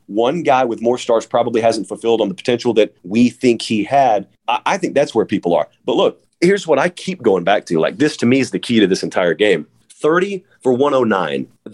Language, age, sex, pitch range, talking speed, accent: English, 40-59, male, 130-195 Hz, 230 wpm, American